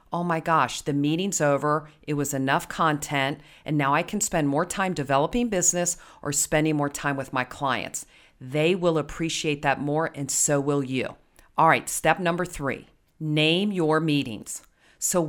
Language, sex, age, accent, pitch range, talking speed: English, female, 40-59, American, 145-180 Hz, 175 wpm